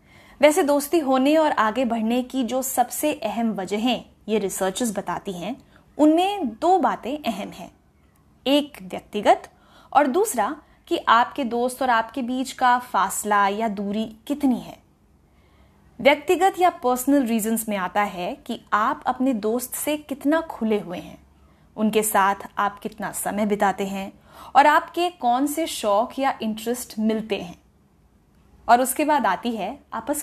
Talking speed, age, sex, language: 145 wpm, 20-39, female, Hindi